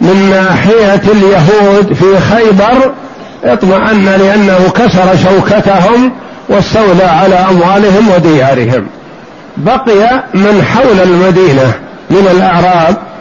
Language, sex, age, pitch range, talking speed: Arabic, male, 60-79, 185-220 Hz, 85 wpm